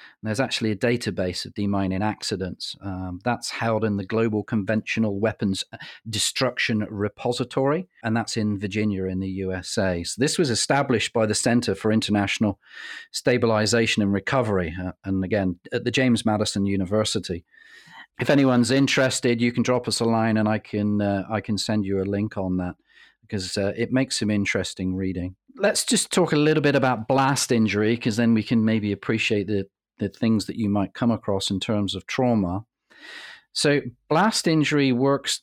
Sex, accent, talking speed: male, British, 175 wpm